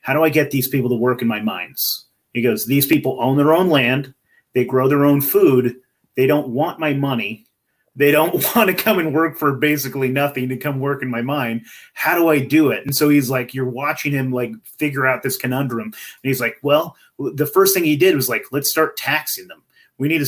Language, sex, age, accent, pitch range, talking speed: English, male, 30-49, American, 125-150 Hz, 235 wpm